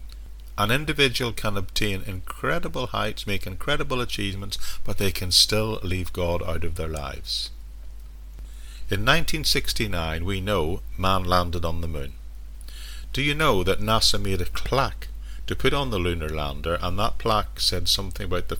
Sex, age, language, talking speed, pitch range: male, 50-69, English, 160 wpm, 75-100 Hz